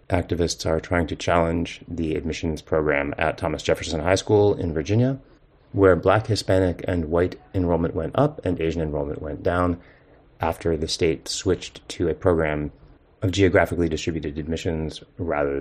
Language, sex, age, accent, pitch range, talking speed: English, male, 30-49, American, 85-110 Hz, 155 wpm